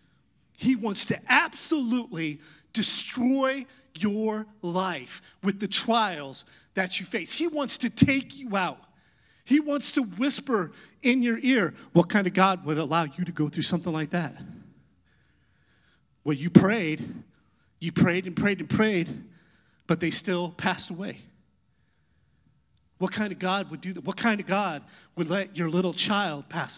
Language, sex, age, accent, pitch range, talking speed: English, male, 30-49, American, 175-230 Hz, 155 wpm